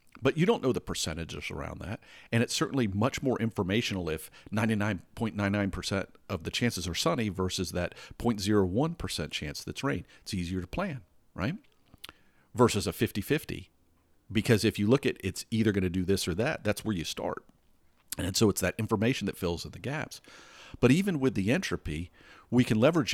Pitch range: 95-120 Hz